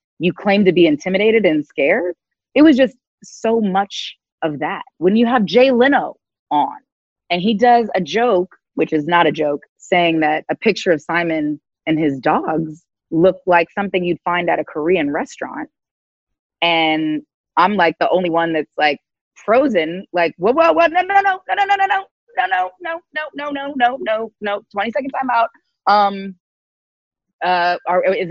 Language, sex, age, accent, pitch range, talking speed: English, female, 30-49, American, 160-240 Hz, 185 wpm